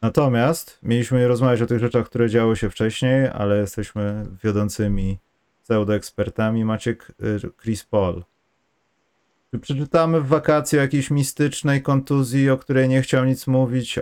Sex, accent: male, native